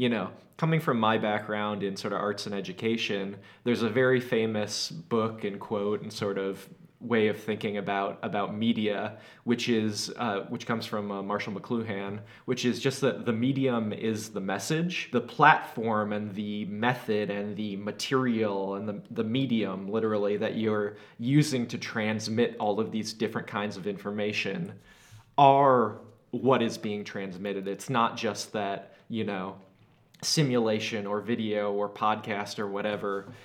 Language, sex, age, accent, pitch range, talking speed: English, male, 20-39, American, 105-125 Hz, 160 wpm